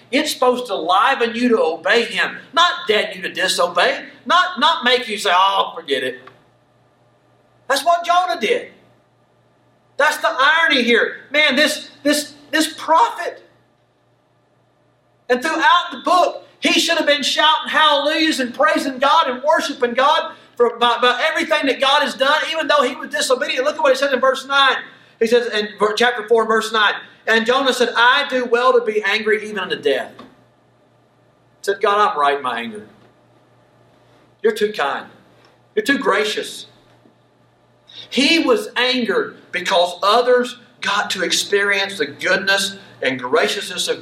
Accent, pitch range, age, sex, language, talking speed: American, 215-310 Hz, 40-59, male, English, 160 wpm